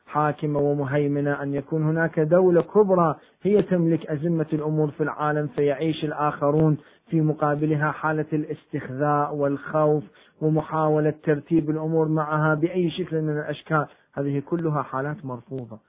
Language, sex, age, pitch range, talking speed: Arabic, male, 40-59, 135-170 Hz, 120 wpm